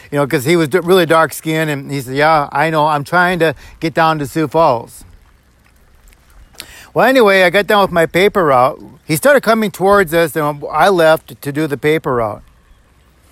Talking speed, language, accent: 195 wpm, English, American